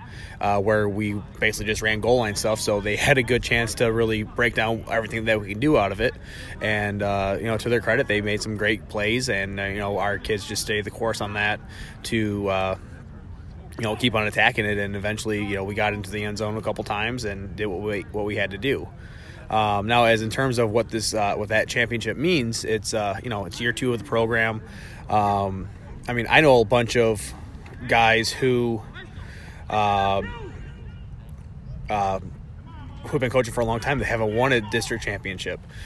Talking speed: 215 wpm